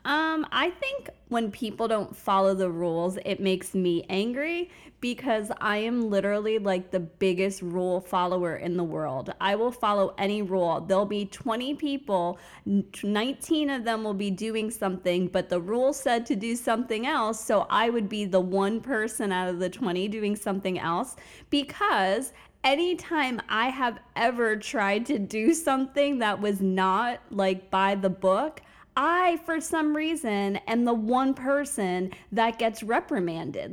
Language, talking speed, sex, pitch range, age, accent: English, 160 wpm, female, 195-260 Hz, 20-39, American